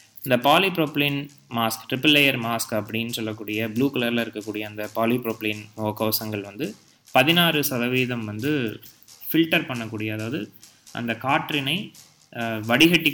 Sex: male